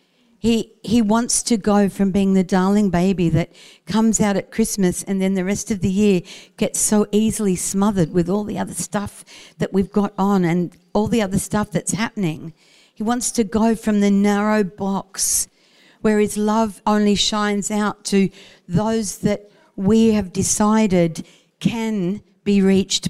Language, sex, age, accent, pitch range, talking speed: English, female, 60-79, Australian, 190-220 Hz, 170 wpm